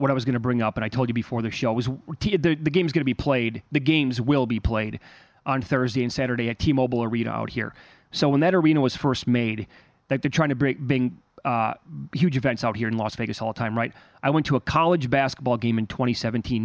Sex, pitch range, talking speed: male, 120-150 Hz, 250 wpm